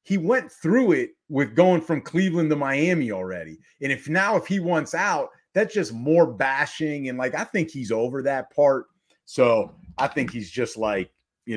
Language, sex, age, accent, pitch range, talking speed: English, male, 30-49, American, 115-160 Hz, 190 wpm